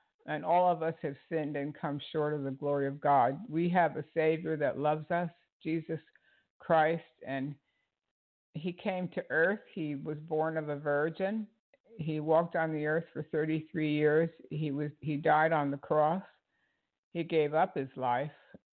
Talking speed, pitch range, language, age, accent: 175 wpm, 150-180 Hz, English, 60-79, American